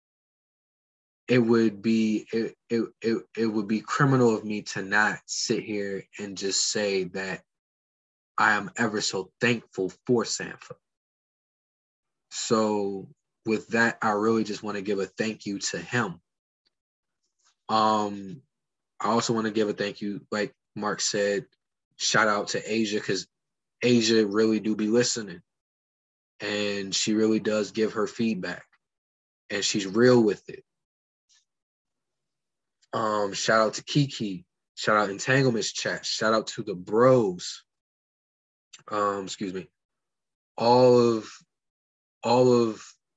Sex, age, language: male, 20-39, English